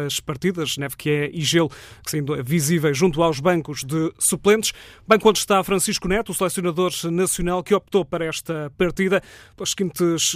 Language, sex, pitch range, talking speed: Portuguese, male, 160-190 Hz, 175 wpm